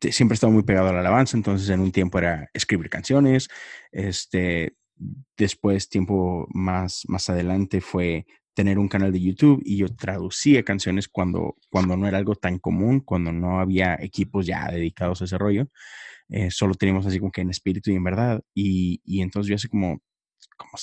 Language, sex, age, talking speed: Spanish, male, 20-39, 185 wpm